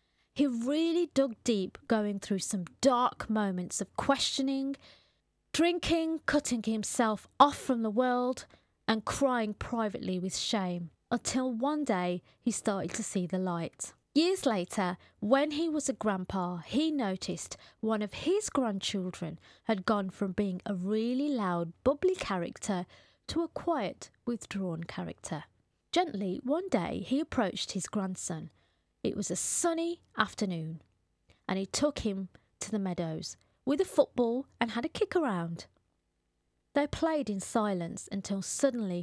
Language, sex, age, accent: English, female, 30-49, British